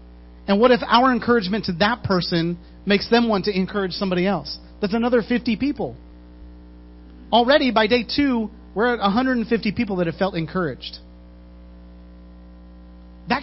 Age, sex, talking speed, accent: 40-59, male, 145 wpm, American